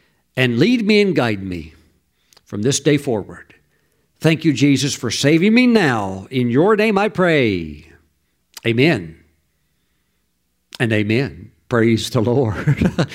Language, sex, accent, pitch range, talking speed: English, male, American, 105-145 Hz, 130 wpm